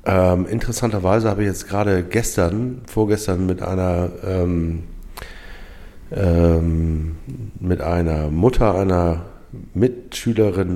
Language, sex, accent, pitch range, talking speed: German, male, German, 85-105 Hz, 80 wpm